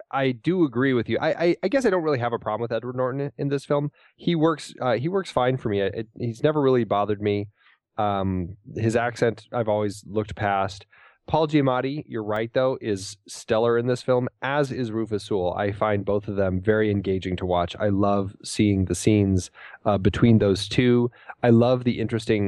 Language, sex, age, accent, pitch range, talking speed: English, male, 20-39, American, 95-125 Hz, 215 wpm